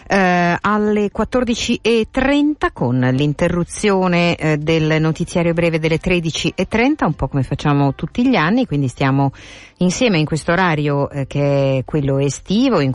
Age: 50-69